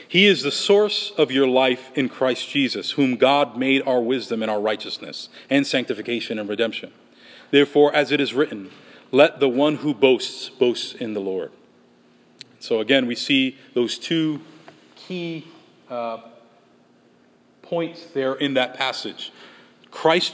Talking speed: 150 wpm